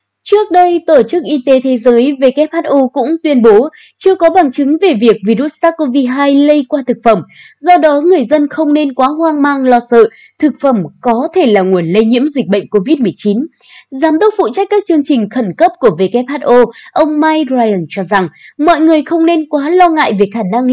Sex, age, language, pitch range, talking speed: female, 20-39, Vietnamese, 225-320 Hz, 210 wpm